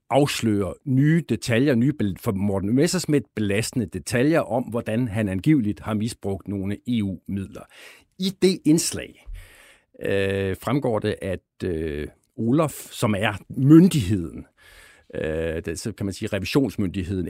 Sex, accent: male, native